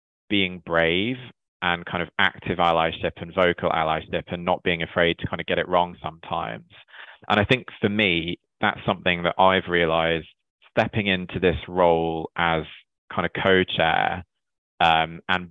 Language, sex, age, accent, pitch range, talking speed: English, male, 20-39, British, 80-95 Hz, 155 wpm